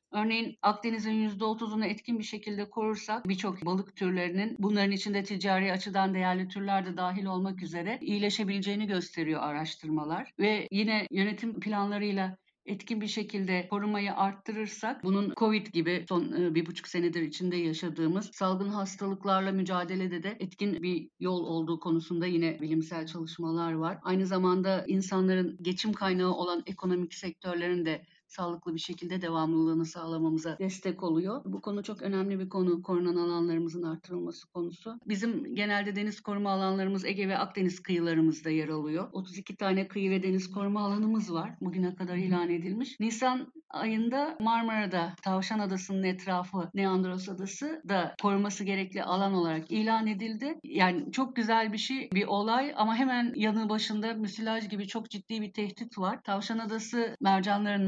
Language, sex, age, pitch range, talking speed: Turkish, female, 50-69, 180-210 Hz, 145 wpm